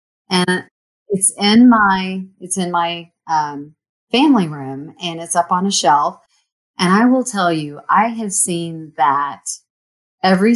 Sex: female